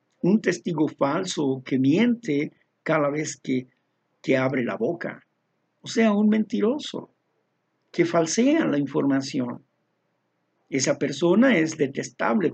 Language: Spanish